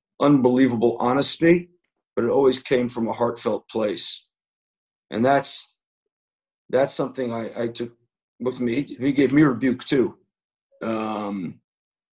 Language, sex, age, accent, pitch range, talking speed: English, male, 50-69, American, 115-140 Hz, 125 wpm